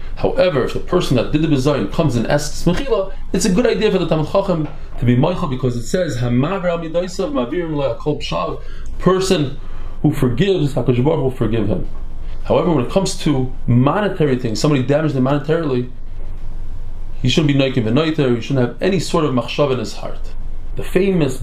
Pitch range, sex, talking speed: 115-150 Hz, male, 180 wpm